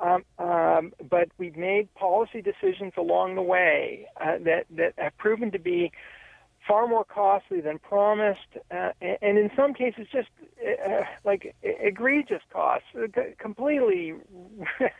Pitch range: 185-275 Hz